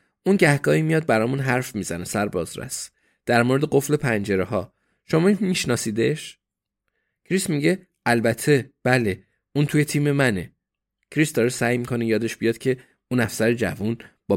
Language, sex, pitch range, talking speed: Persian, male, 105-135 Hz, 145 wpm